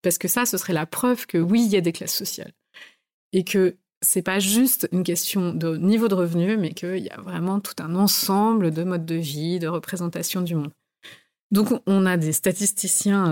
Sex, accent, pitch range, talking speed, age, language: female, French, 165-210 Hz, 215 wpm, 30-49, French